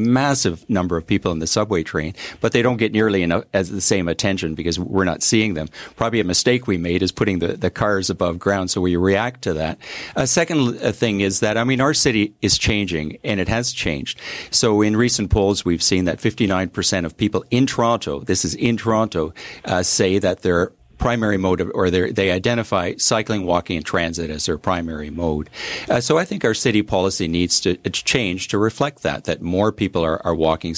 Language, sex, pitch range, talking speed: English, male, 85-105 Hz, 210 wpm